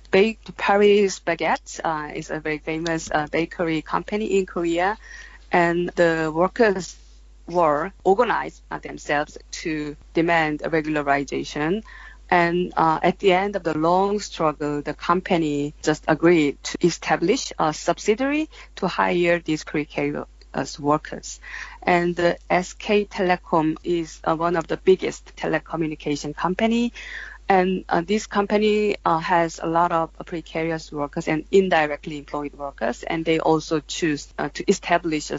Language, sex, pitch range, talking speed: English, female, 155-185 Hz, 140 wpm